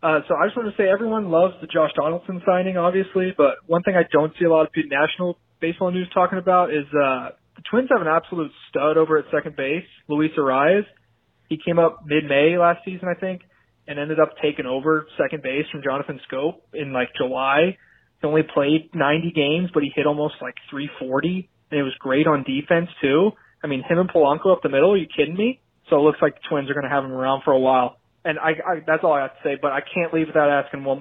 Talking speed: 240 wpm